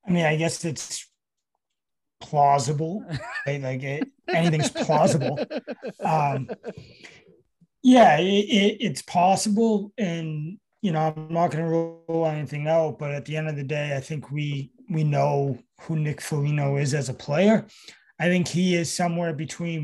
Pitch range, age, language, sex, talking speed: 145-175 Hz, 20-39, English, male, 145 wpm